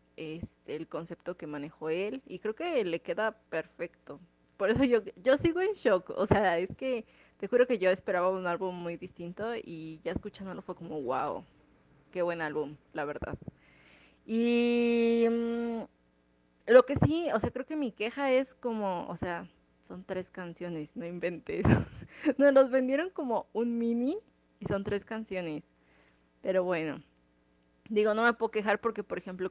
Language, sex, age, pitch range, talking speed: Spanish, female, 20-39, 170-230 Hz, 170 wpm